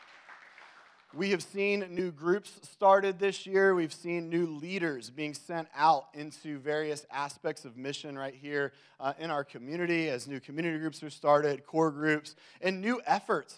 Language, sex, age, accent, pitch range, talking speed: English, male, 30-49, American, 140-170 Hz, 165 wpm